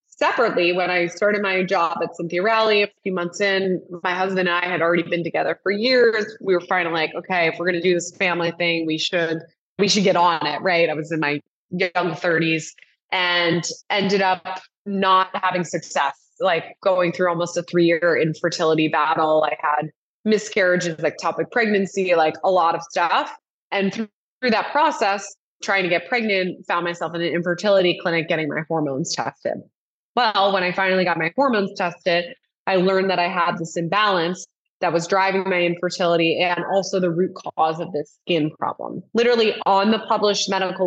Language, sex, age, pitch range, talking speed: English, female, 20-39, 170-200 Hz, 185 wpm